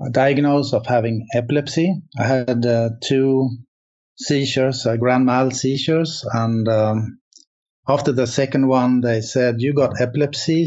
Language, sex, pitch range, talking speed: English, male, 115-135 Hz, 135 wpm